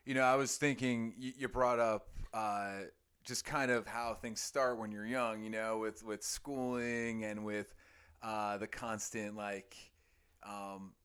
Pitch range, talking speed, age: 100-120 Hz, 165 wpm, 30-49